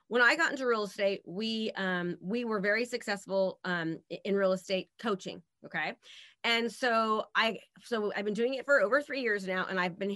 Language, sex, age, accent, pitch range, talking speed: English, female, 30-49, American, 195-245 Hz, 215 wpm